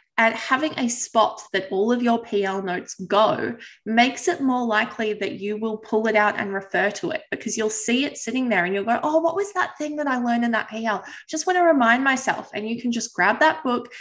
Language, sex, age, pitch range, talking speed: English, female, 20-39, 205-265 Hz, 245 wpm